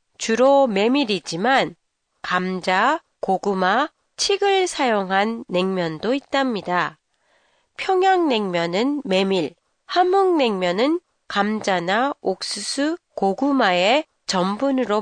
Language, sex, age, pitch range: Japanese, female, 30-49, 195-290 Hz